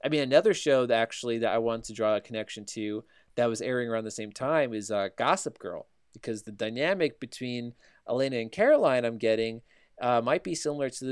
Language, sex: English, male